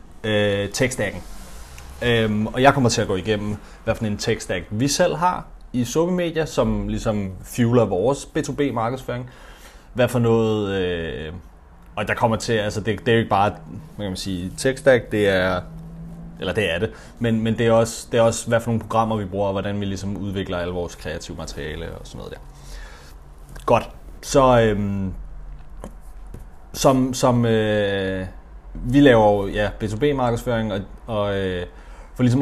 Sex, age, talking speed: male, 30-49, 175 wpm